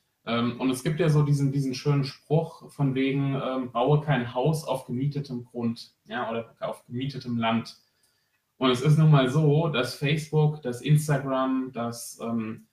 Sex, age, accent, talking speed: male, 30-49, German, 165 wpm